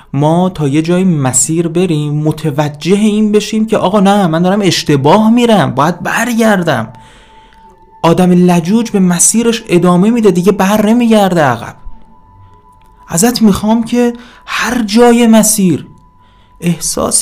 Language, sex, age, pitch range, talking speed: Persian, male, 30-49, 120-190 Hz, 120 wpm